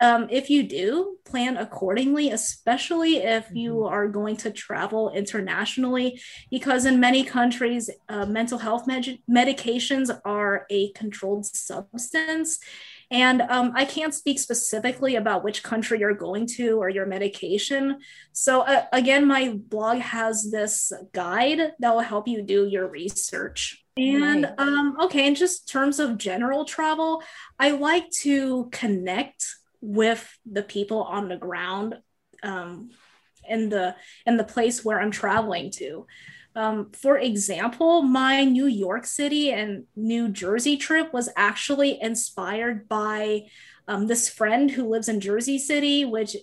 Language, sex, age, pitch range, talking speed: English, female, 20-39, 210-275 Hz, 140 wpm